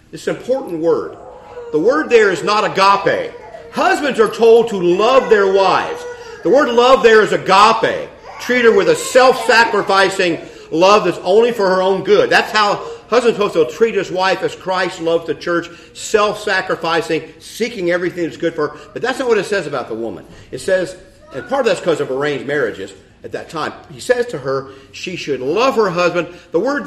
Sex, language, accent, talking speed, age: male, English, American, 200 wpm, 50-69